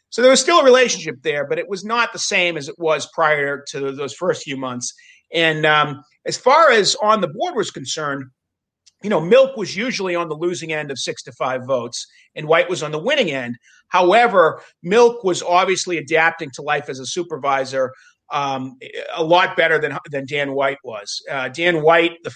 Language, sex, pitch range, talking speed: English, male, 140-210 Hz, 205 wpm